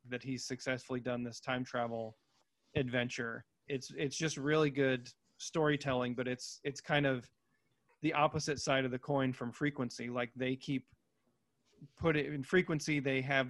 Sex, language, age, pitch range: male, English, 30-49, 120-140 Hz